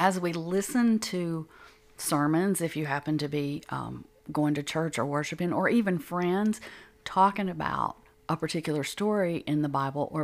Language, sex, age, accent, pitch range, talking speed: English, female, 40-59, American, 145-170 Hz, 165 wpm